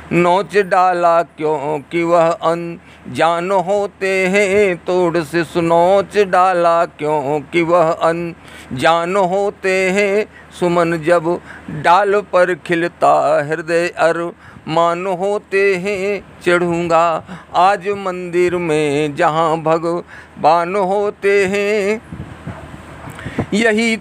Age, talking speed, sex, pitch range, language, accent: 50-69, 95 wpm, male, 170-205 Hz, Hindi, native